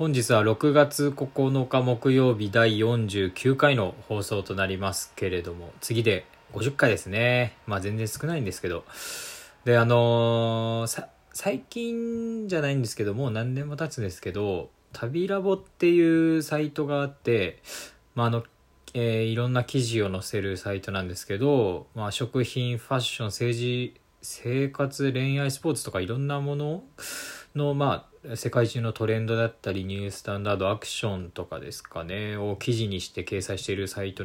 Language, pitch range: Japanese, 105-140 Hz